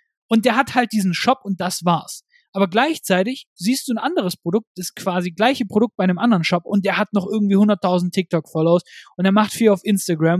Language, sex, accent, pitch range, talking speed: German, male, German, 180-230 Hz, 215 wpm